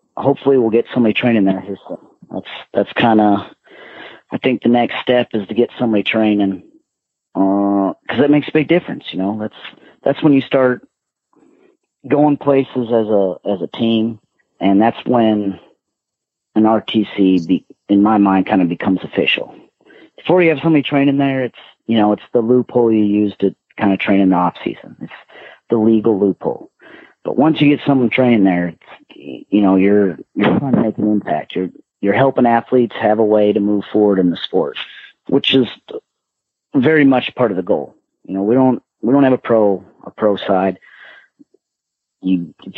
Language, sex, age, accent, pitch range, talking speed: English, male, 40-59, American, 100-130 Hz, 180 wpm